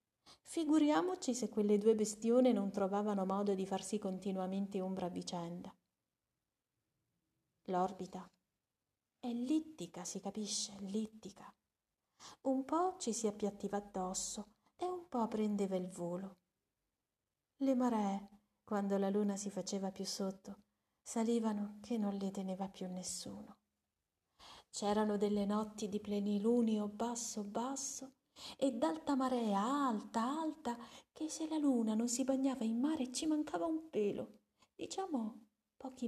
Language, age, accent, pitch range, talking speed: Italian, 40-59, native, 195-260 Hz, 125 wpm